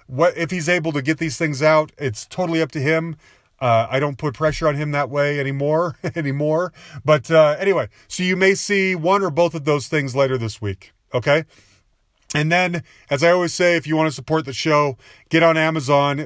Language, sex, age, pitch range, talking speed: English, male, 30-49, 130-175 Hz, 215 wpm